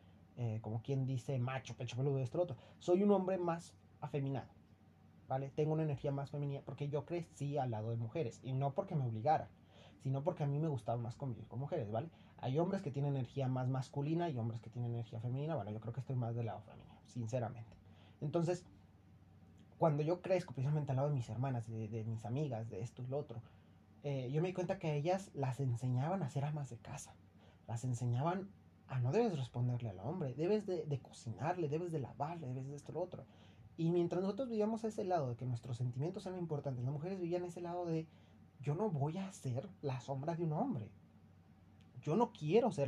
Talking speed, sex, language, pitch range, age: 215 wpm, male, Spanish, 115-155 Hz, 30-49